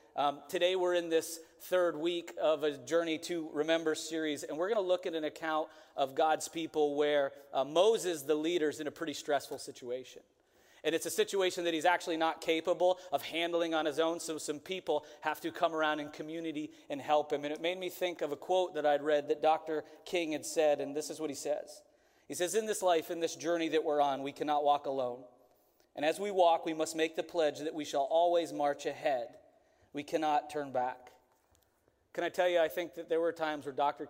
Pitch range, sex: 145-165 Hz, male